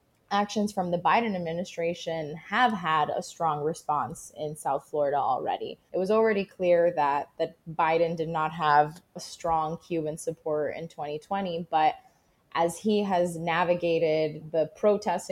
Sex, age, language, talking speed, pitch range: female, 20-39, English, 145 wpm, 155-175 Hz